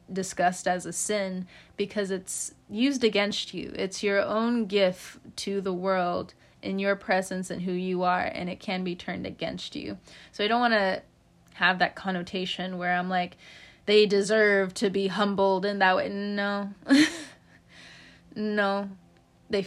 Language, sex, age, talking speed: English, female, 20-39, 160 wpm